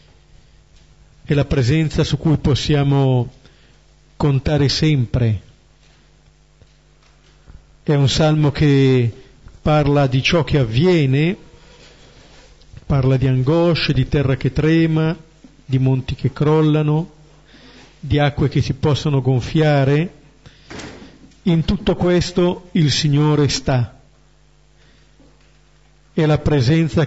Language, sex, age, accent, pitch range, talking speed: Italian, male, 50-69, native, 135-165 Hz, 95 wpm